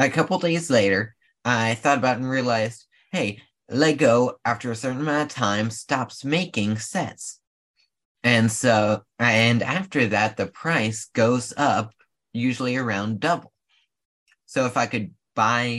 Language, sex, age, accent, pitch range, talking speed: English, male, 20-39, American, 110-135 Hz, 145 wpm